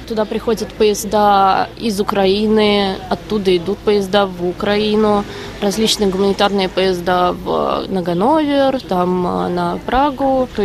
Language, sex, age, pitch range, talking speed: Russian, female, 20-39, 185-220 Hz, 115 wpm